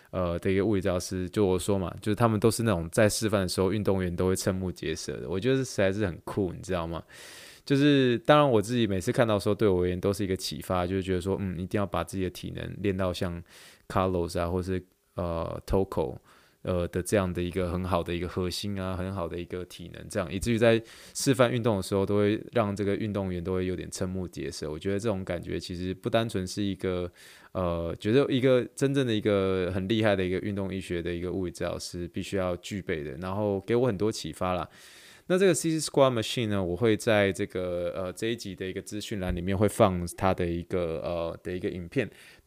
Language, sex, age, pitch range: Chinese, male, 20-39, 90-115 Hz